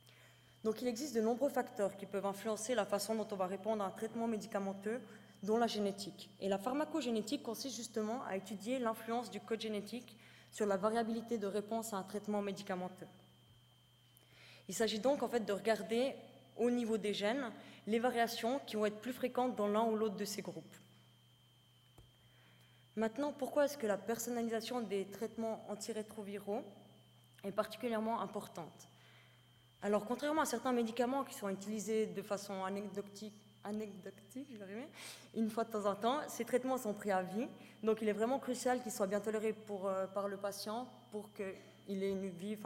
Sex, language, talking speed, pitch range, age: female, French, 170 wpm, 195-230 Hz, 20-39